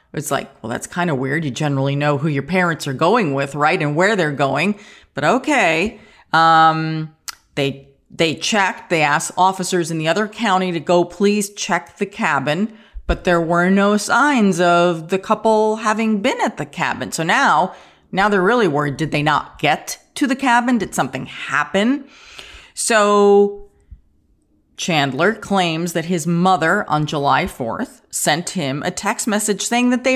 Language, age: English, 40-59